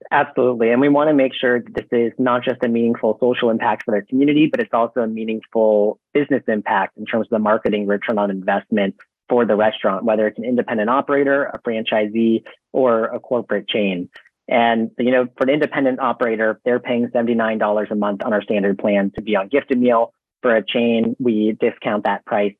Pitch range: 105-125 Hz